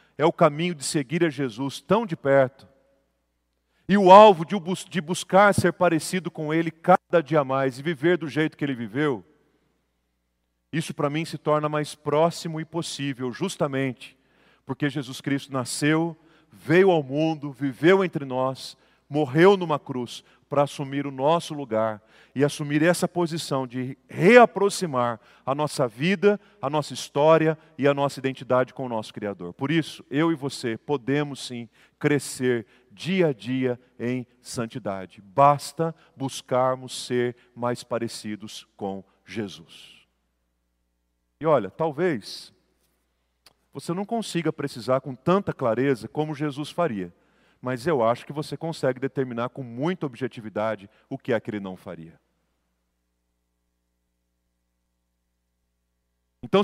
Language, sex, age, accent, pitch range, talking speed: Portuguese, male, 40-59, Brazilian, 110-160 Hz, 135 wpm